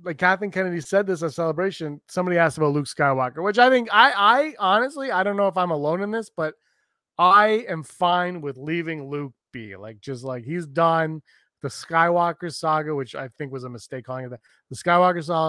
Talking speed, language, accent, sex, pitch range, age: 205 wpm, English, American, male, 140-175 Hz, 30-49